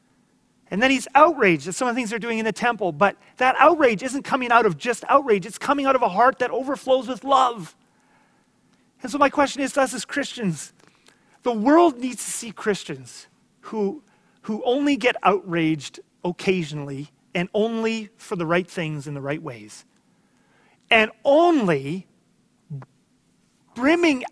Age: 30-49